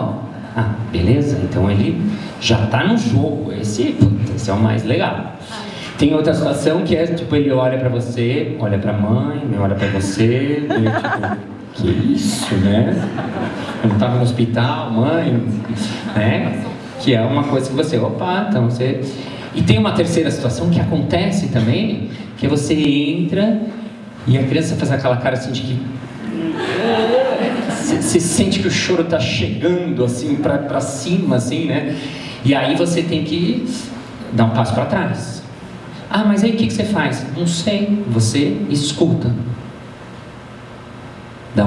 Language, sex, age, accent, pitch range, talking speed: Portuguese, male, 40-59, Brazilian, 115-160 Hz, 150 wpm